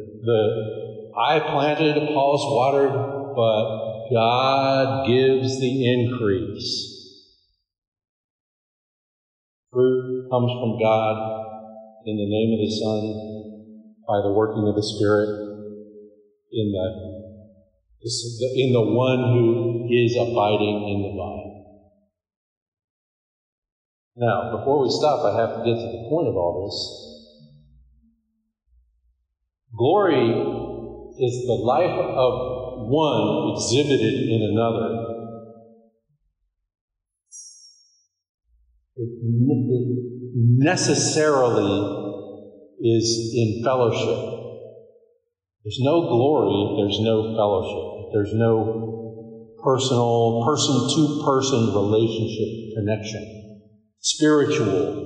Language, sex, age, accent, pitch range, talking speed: English, male, 50-69, American, 105-125 Hz, 90 wpm